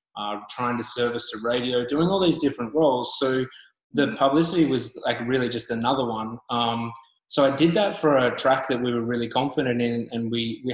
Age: 20-39